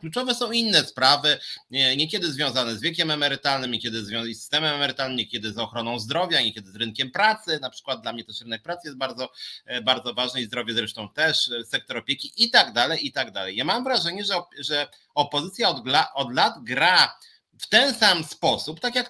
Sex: male